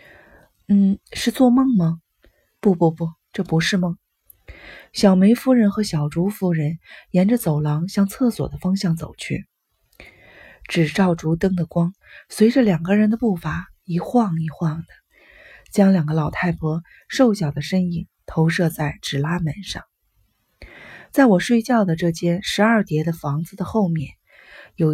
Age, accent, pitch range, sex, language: 30-49, native, 160-205 Hz, female, Chinese